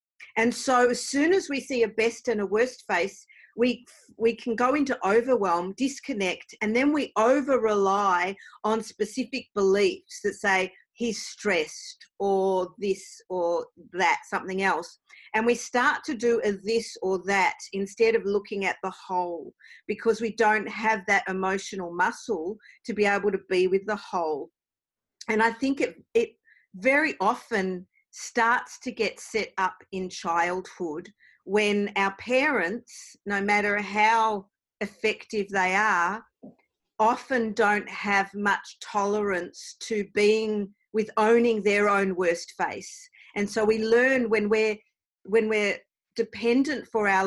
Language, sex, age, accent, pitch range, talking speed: English, female, 40-59, Australian, 195-240 Hz, 145 wpm